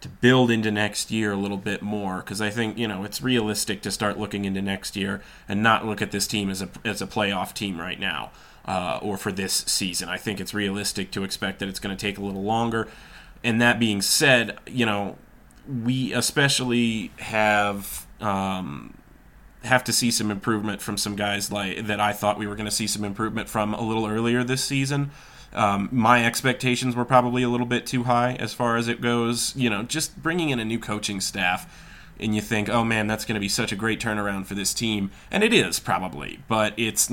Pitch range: 100-120 Hz